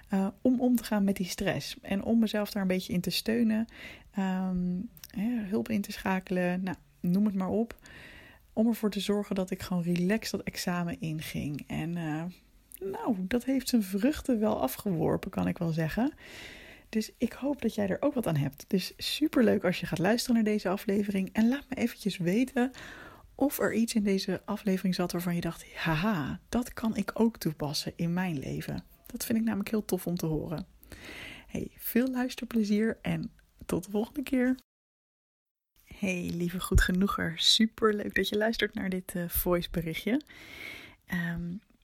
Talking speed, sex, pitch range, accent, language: 175 wpm, female, 180-230 Hz, Dutch, Dutch